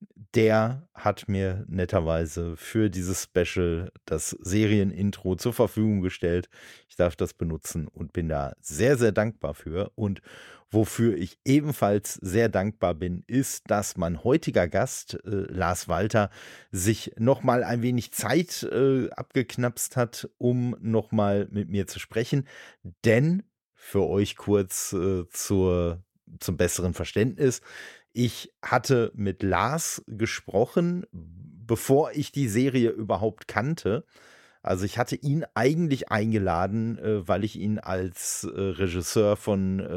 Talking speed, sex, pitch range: 125 wpm, male, 95-120 Hz